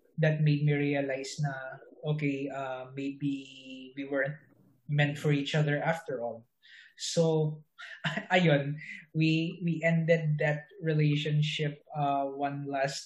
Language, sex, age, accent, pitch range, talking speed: English, male, 20-39, Filipino, 140-165 Hz, 120 wpm